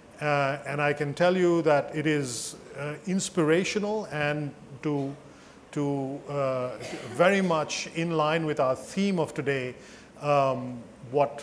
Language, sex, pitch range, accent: English, male, 140-175 Hz, Indian